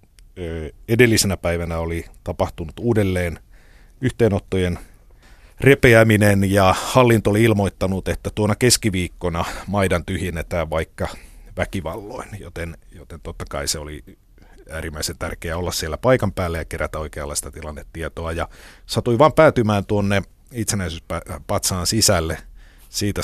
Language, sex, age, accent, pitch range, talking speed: Finnish, male, 50-69, native, 85-105 Hz, 110 wpm